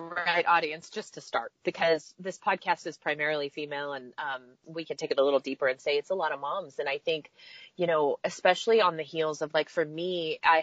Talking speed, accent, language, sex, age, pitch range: 230 wpm, American, English, female, 30-49, 160-215 Hz